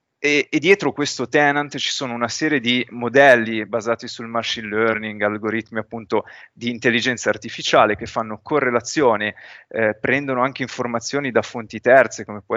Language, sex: Italian, male